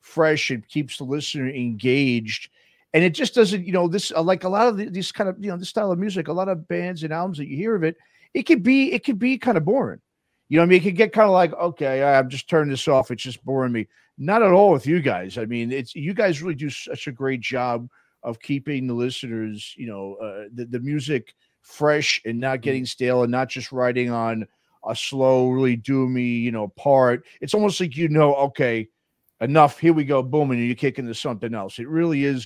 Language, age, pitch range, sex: English, 40-59, 120-155 Hz, male